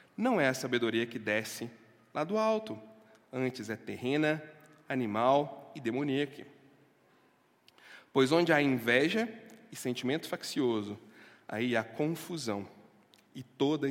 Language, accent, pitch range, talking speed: Portuguese, Brazilian, 115-170 Hz, 115 wpm